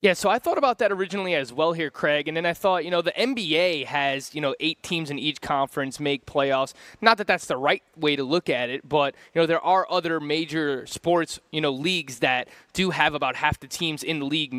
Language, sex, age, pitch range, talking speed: English, male, 20-39, 145-180 Hz, 245 wpm